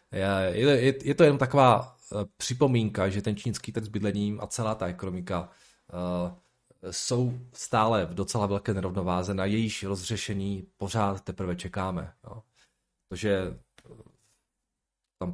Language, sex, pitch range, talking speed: Czech, male, 95-110 Hz, 115 wpm